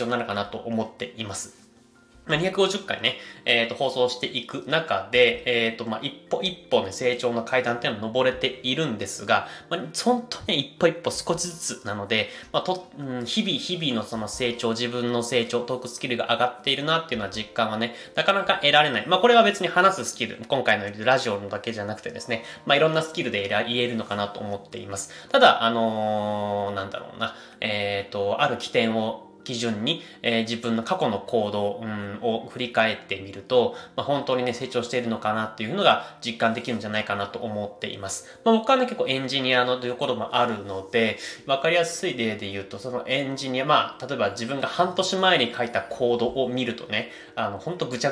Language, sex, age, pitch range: Japanese, male, 20-39, 110-160 Hz